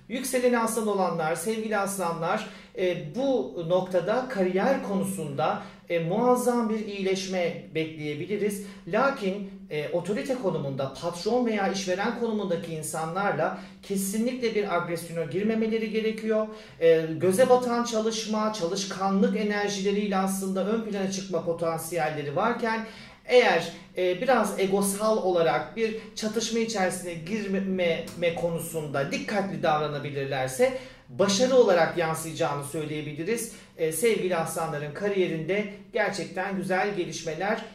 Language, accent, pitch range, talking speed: Turkish, native, 170-220 Hz, 95 wpm